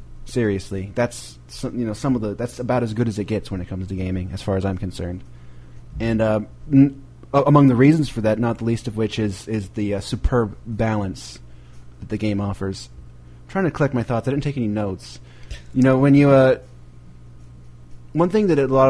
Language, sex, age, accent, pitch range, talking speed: English, male, 30-49, American, 95-115 Hz, 220 wpm